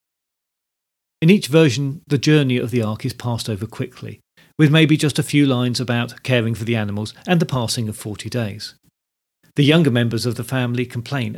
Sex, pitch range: male, 115-150 Hz